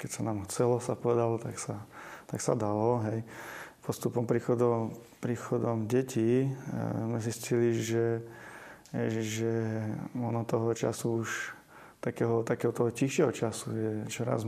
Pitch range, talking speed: 115-130 Hz, 125 wpm